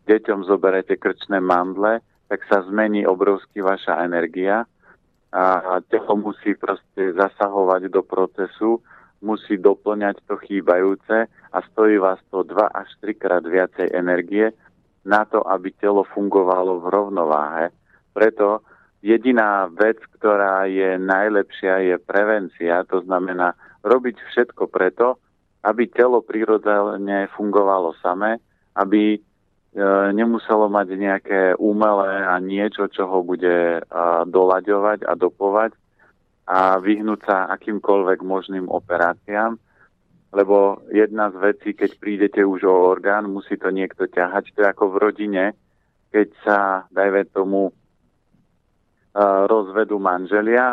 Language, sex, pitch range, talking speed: Slovak, male, 95-105 Hz, 115 wpm